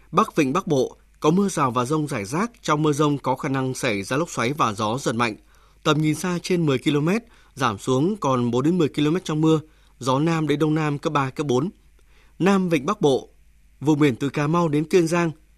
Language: Vietnamese